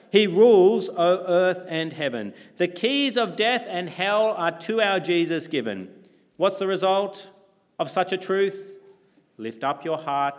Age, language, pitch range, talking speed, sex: 40-59, English, 130-190 Hz, 160 wpm, male